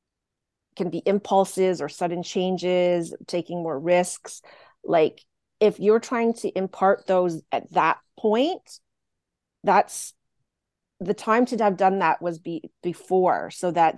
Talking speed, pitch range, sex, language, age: 130 wpm, 165-190 Hz, female, English, 30-49